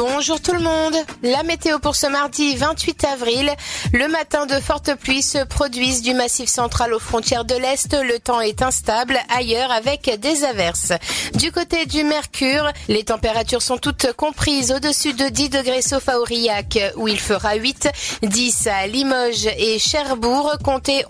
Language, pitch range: French, 230-285 Hz